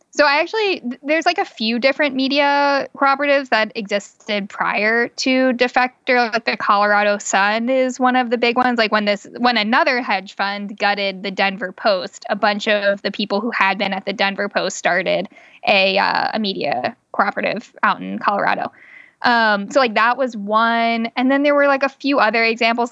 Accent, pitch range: American, 205-270 Hz